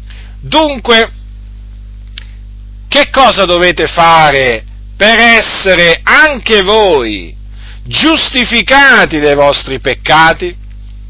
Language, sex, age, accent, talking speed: Italian, male, 50-69, native, 70 wpm